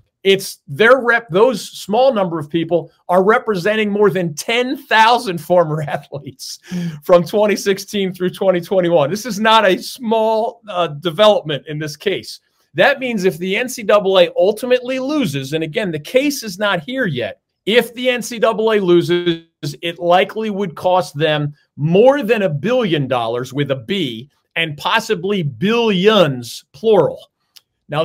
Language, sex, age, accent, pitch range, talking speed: English, male, 40-59, American, 155-210 Hz, 140 wpm